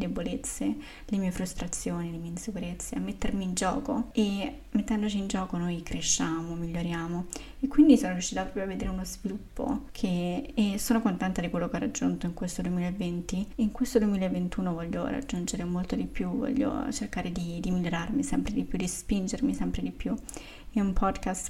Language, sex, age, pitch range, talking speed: Italian, female, 20-39, 180-245 Hz, 180 wpm